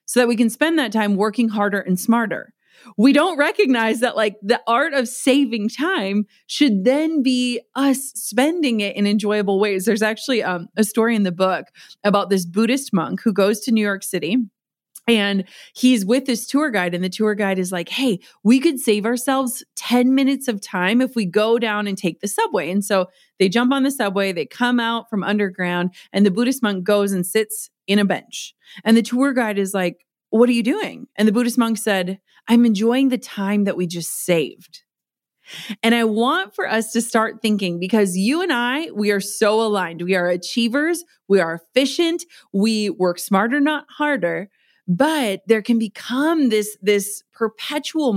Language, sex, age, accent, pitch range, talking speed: English, female, 30-49, American, 200-250 Hz, 195 wpm